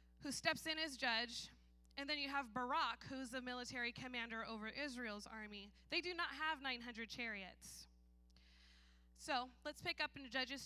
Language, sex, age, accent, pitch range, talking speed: English, female, 20-39, American, 215-285 Hz, 165 wpm